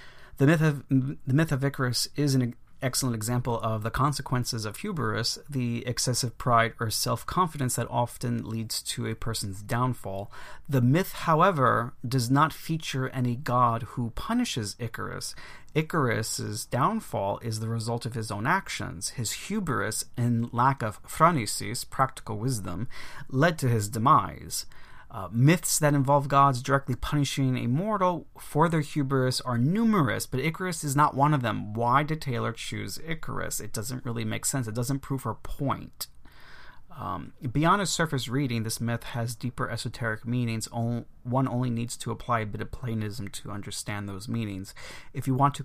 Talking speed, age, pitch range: 160 wpm, 30-49, 115-140 Hz